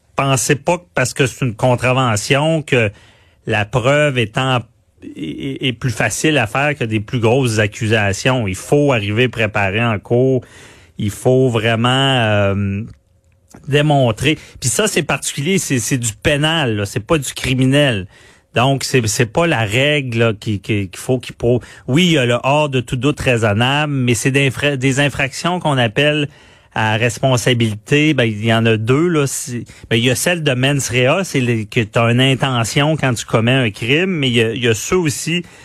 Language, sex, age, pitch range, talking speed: French, male, 30-49, 115-140 Hz, 190 wpm